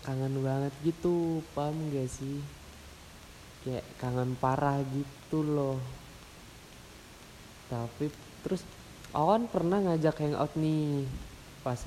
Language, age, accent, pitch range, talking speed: Indonesian, 20-39, native, 120-145 Hz, 95 wpm